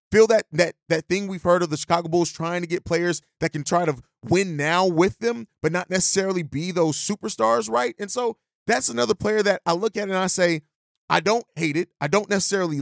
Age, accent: 30-49, American